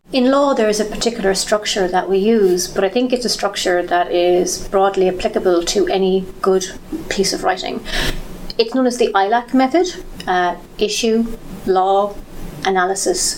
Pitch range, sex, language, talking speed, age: 195-245 Hz, female, English, 160 wpm, 30-49